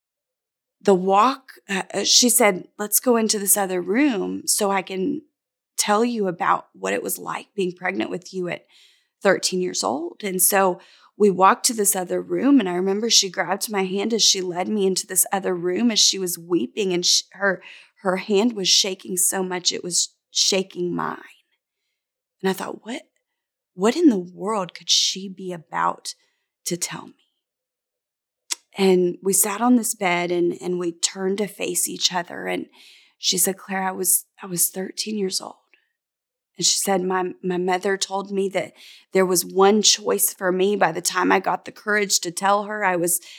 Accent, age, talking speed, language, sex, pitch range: American, 20-39, 190 wpm, English, female, 185-220 Hz